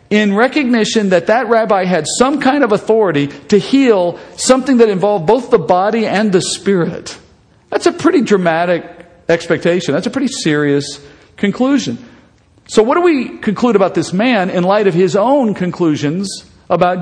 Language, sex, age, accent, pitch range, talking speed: English, male, 50-69, American, 150-220 Hz, 160 wpm